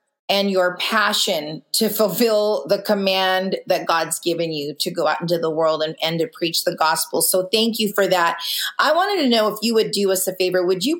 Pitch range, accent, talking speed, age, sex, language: 175-210 Hz, American, 225 wpm, 30-49, female, English